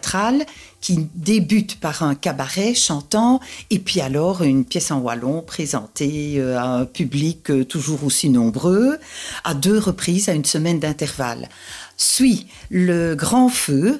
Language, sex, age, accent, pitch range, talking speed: French, female, 50-69, French, 150-215 Hz, 135 wpm